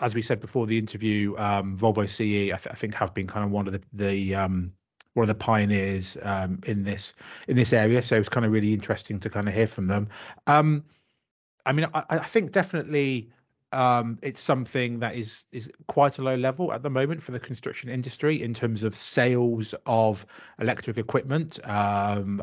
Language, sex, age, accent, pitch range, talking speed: English, male, 30-49, British, 105-130 Hz, 205 wpm